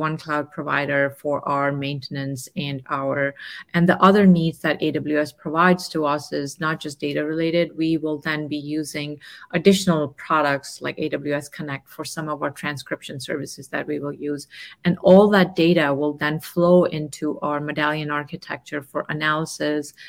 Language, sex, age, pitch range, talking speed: English, female, 30-49, 145-170 Hz, 165 wpm